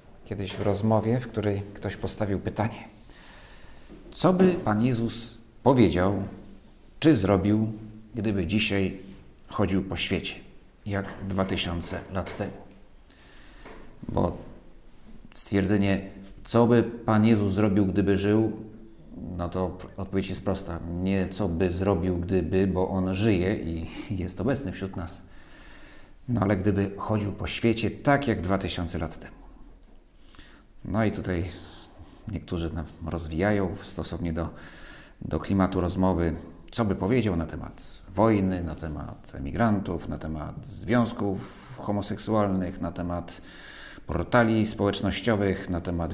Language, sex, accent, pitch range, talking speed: Polish, male, native, 90-110 Hz, 120 wpm